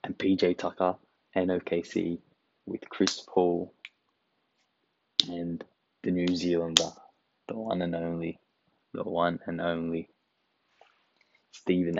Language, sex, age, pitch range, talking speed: English, male, 20-39, 90-100 Hz, 105 wpm